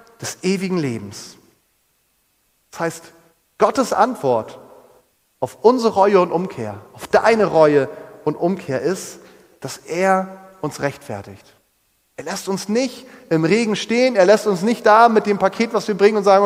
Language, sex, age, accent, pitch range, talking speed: German, male, 30-49, German, 160-215 Hz, 155 wpm